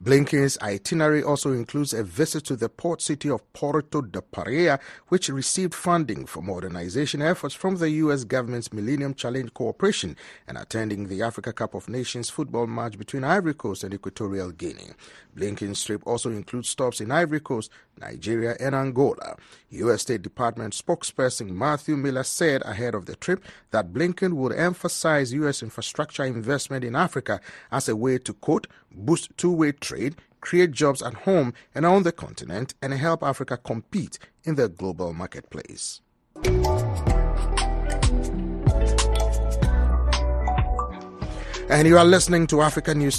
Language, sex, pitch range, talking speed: English, male, 110-155 Hz, 145 wpm